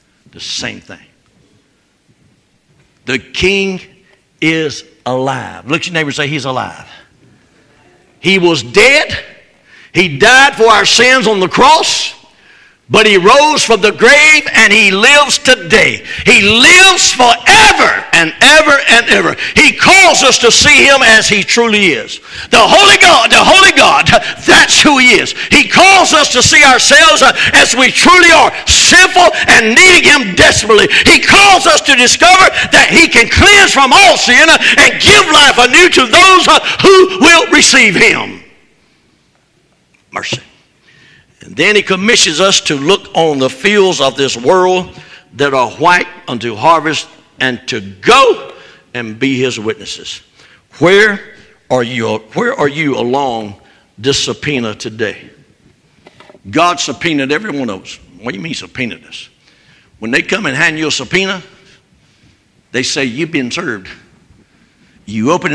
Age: 60-79